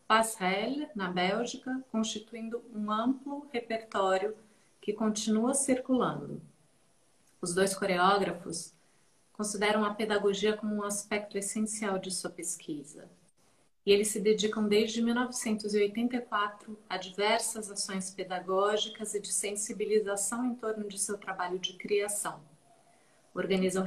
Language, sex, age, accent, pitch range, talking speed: Portuguese, female, 40-59, Brazilian, 190-230 Hz, 110 wpm